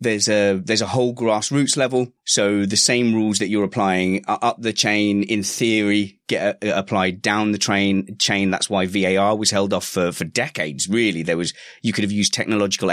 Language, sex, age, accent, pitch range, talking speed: English, male, 30-49, British, 95-115 Hz, 210 wpm